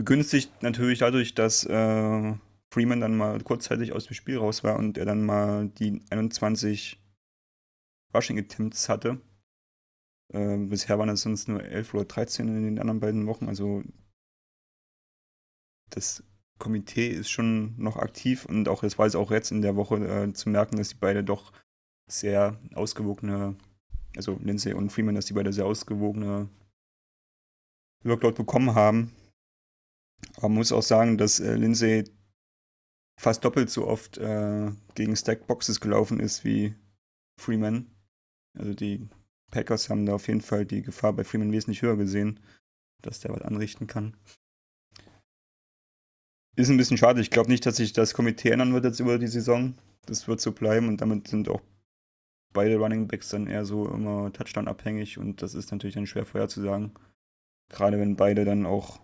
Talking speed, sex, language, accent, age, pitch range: 165 wpm, male, German, German, 30-49, 100-110 Hz